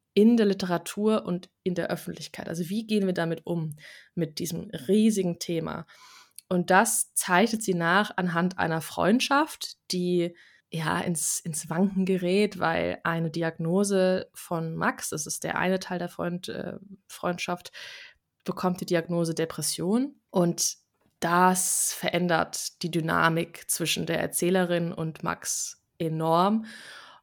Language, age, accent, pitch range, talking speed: German, 20-39, German, 170-195 Hz, 130 wpm